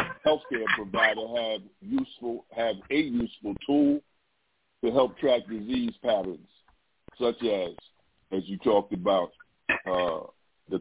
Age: 50-69